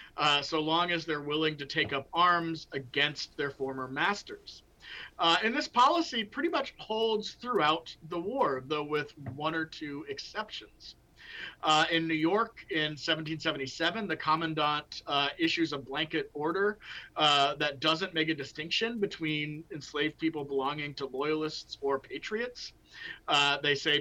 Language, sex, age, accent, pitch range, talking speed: English, male, 40-59, American, 140-180 Hz, 150 wpm